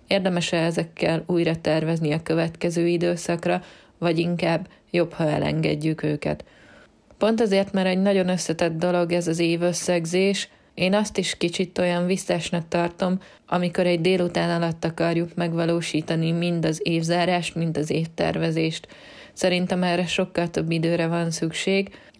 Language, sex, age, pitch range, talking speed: Hungarian, female, 20-39, 165-180 Hz, 130 wpm